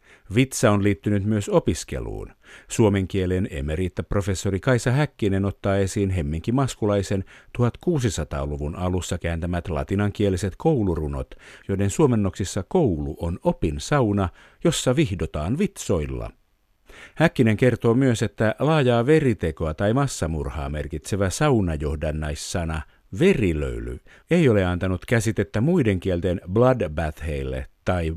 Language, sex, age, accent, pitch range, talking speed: Finnish, male, 50-69, native, 90-115 Hz, 100 wpm